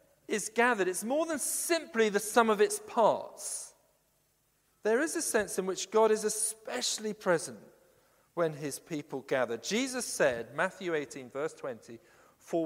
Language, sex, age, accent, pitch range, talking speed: English, male, 50-69, British, 155-205 Hz, 150 wpm